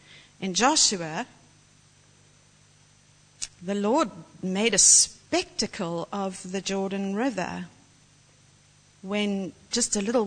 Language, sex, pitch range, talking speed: English, female, 180-220 Hz, 90 wpm